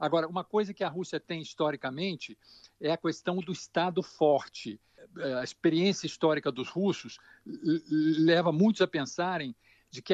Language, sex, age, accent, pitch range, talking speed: Portuguese, male, 60-79, Brazilian, 155-200 Hz, 150 wpm